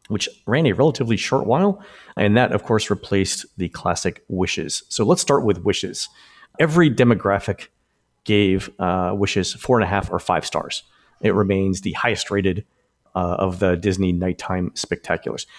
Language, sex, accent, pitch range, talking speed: English, male, American, 100-150 Hz, 160 wpm